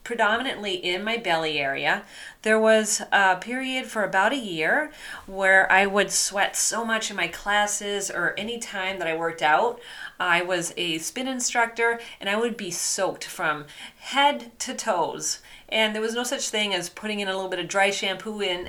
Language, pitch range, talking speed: English, 180-230 Hz, 190 wpm